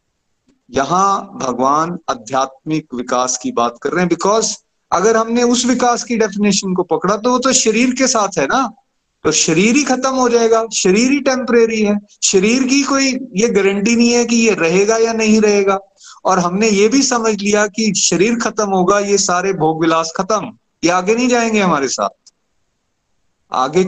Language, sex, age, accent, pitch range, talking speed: Hindi, male, 30-49, native, 155-225 Hz, 180 wpm